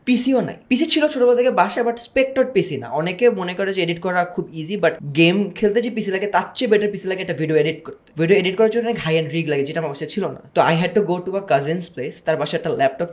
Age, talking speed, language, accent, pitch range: 20-39, 255 wpm, Bengali, native, 150-210 Hz